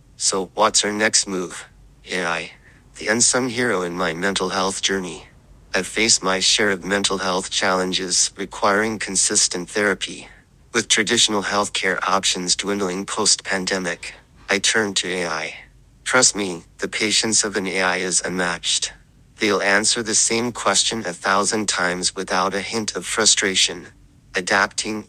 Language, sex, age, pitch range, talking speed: English, male, 30-49, 95-110 Hz, 140 wpm